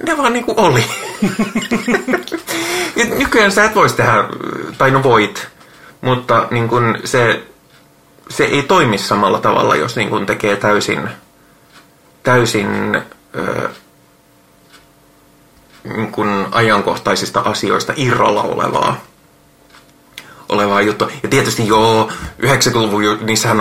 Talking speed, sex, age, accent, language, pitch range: 95 wpm, male, 30-49, native, Finnish, 100-125 Hz